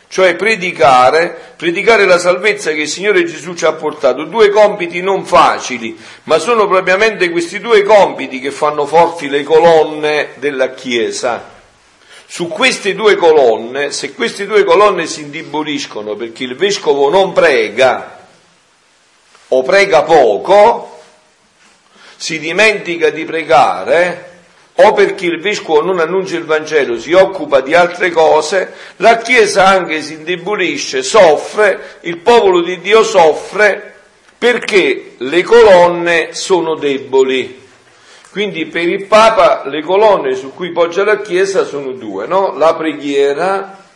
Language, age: Italian, 50-69